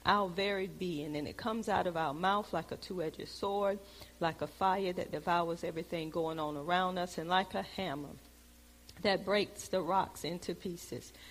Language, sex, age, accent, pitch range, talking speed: English, female, 50-69, American, 160-210 Hz, 180 wpm